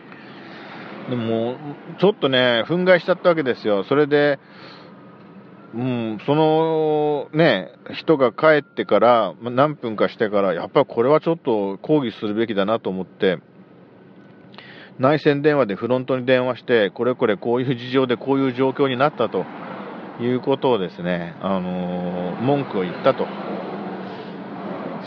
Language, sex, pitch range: Japanese, male, 110-135 Hz